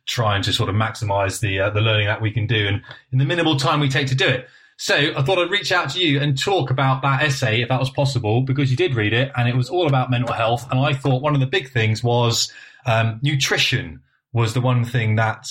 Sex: male